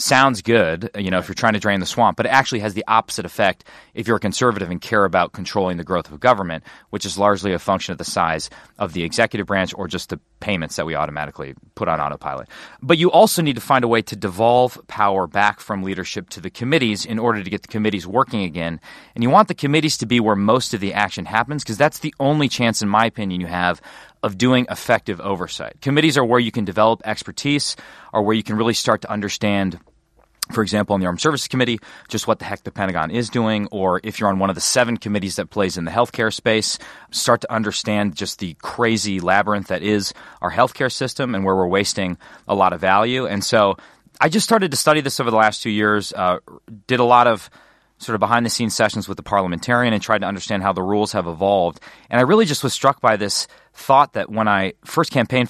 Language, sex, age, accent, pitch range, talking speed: English, male, 30-49, American, 95-120 Hz, 240 wpm